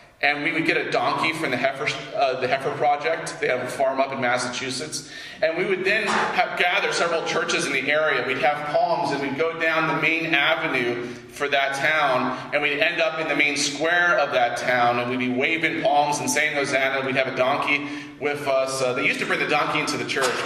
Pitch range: 135-175 Hz